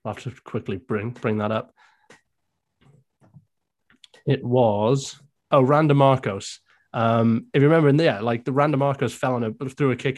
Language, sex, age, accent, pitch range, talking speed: English, male, 20-39, British, 115-140 Hz, 175 wpm